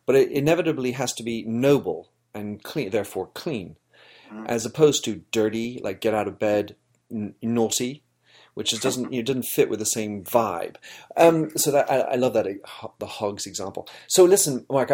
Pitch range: 105-140 Hz